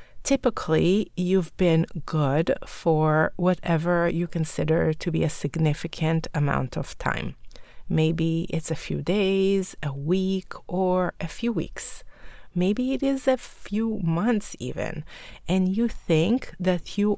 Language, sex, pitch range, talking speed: English, female, 155-195 Hz, 135 wpm